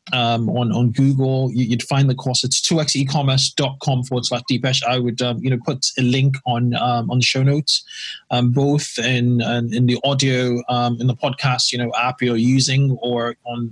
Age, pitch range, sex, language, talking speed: 20-39, 120-140 Hz, male, English, 195 wpm